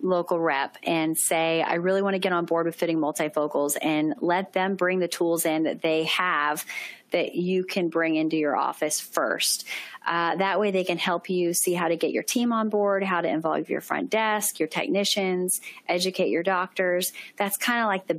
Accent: American